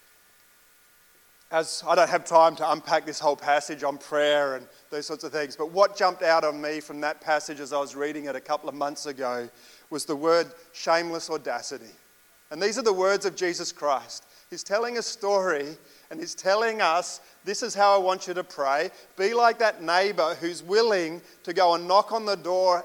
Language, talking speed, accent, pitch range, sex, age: English, 205 wpm, Australian, 155-200 Hz, male, 30-49